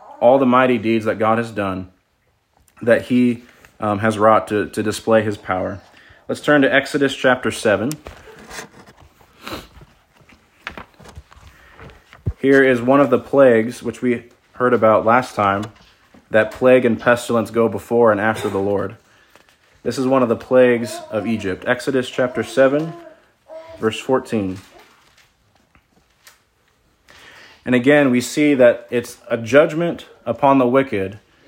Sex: male